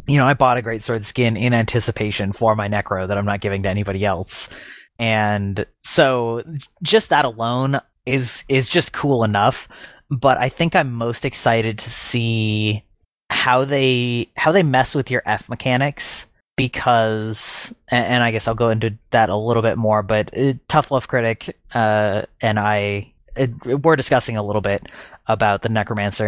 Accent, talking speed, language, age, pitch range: American, 170 wpm, English, 20-39, 105-130 Hz